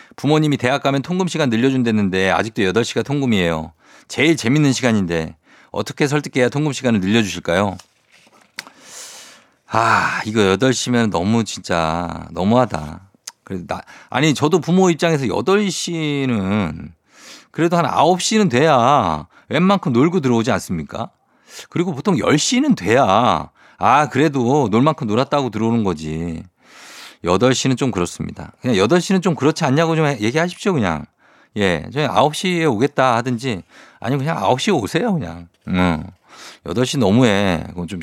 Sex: male